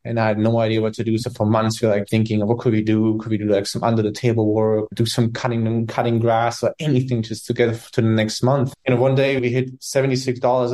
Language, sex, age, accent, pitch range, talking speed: English, male, 20-39, German, 110-120 Hz, 270 wpm